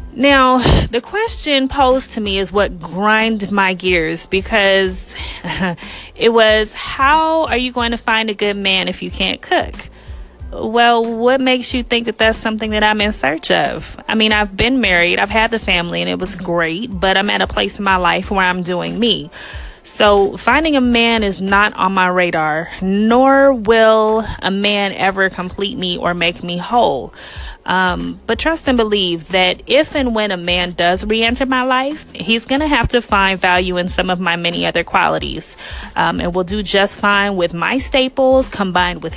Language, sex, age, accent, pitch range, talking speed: English, female, 20-39, American, 180-230 Hz, 190 wpm